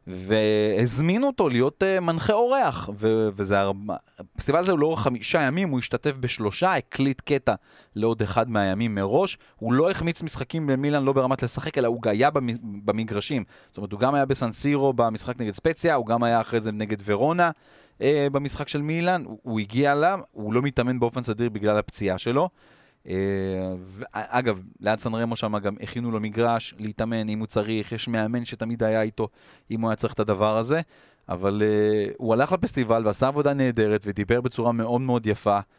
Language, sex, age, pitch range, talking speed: Hebrew, male, 30-49, 105-135 Hz, 180 wpm